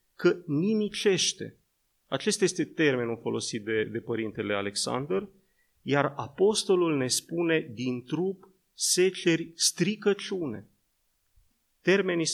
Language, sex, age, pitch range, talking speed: Romanian, male, 30-49, 130-190 Hz, 90 wpm